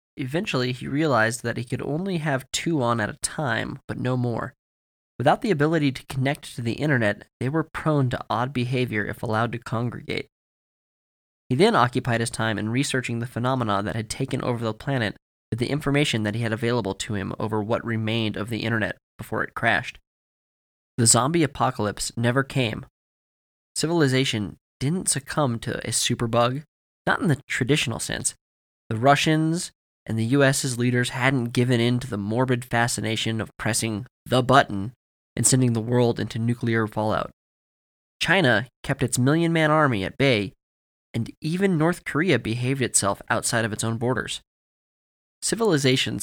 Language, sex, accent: English, male, American